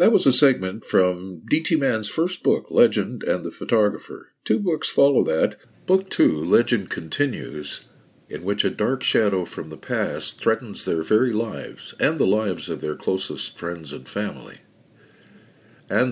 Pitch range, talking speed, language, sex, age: 90-115 Hz, 160 wpm, English, male, 60-79